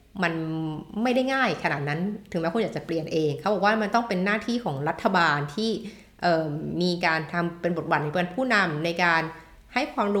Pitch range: 160-195 Hz